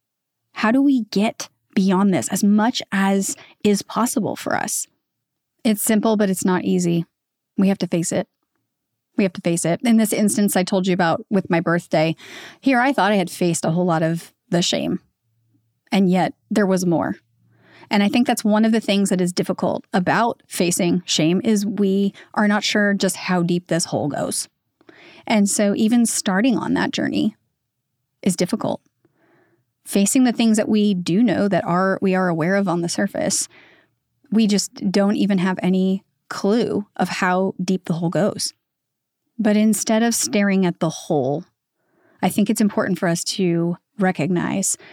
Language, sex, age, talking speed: English, female, 30-49, 180 wpm